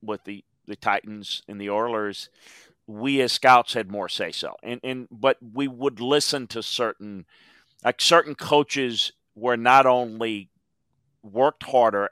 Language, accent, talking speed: English, American, 150 wpm